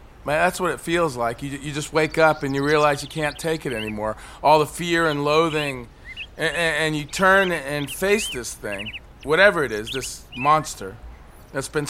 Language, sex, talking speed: English, male, 195 wpm